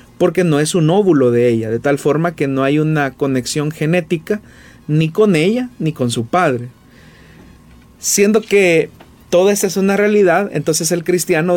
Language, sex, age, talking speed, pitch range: Spanish, male, 40-59, 170 wpm, 130-170 Hz